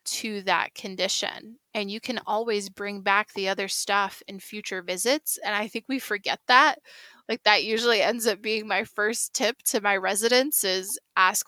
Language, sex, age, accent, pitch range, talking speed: English, female, 20-39, American, 195-230 Hz, 185 wpm